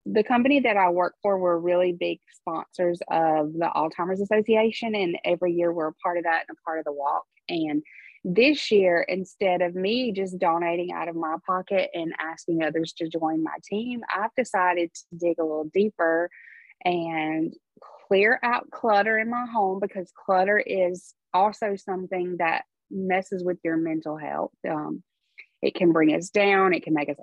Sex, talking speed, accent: female, 180 wpm, American